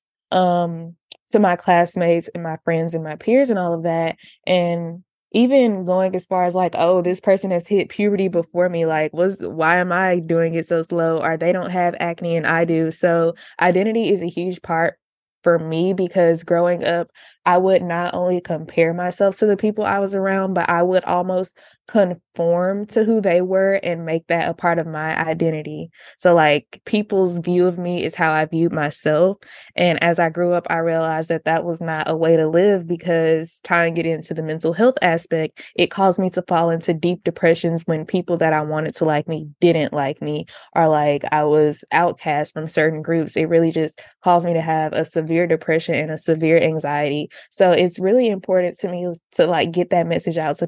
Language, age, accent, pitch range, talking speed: English, 20-39, American, 160-180 Hz, 205 wpm